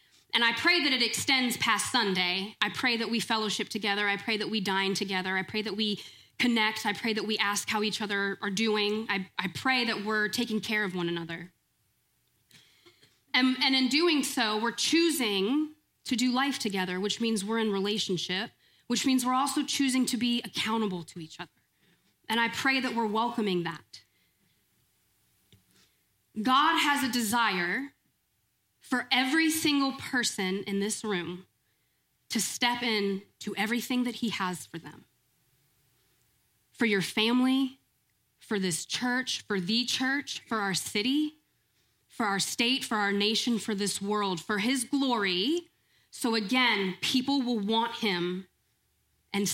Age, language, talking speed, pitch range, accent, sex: 20-39, English, 160 wpm, 195-250 Hz, American, female